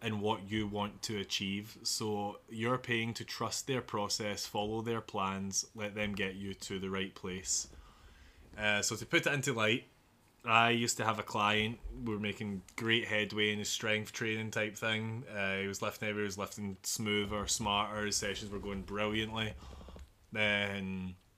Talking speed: 175 wpm